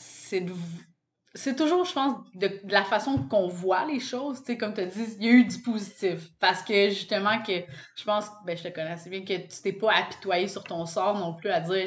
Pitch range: 180-230 Hz